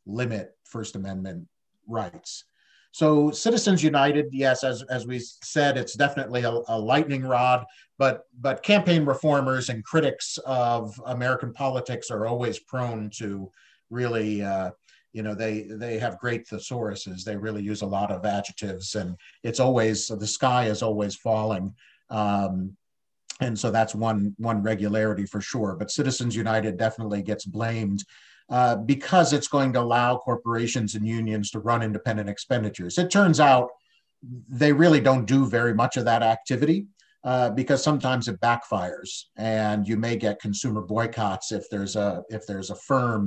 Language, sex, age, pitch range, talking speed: English, male, 50-69, 105-130 Hz, 155 wpm